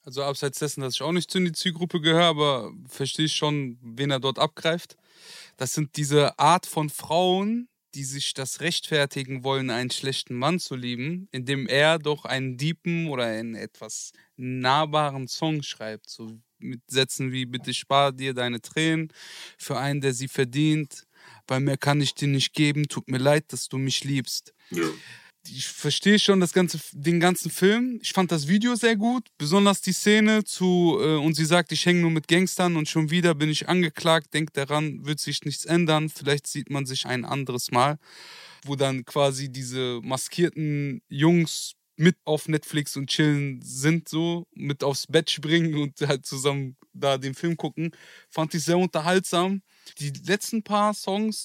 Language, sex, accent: German, male, German